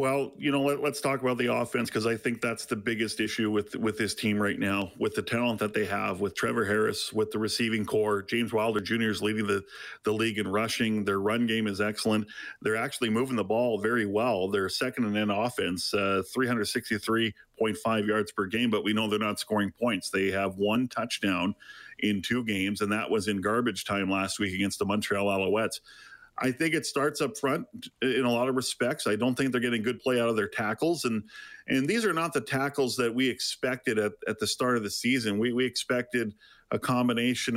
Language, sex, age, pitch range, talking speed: English, male, 40-59, 105-125 Hz, 215 wpm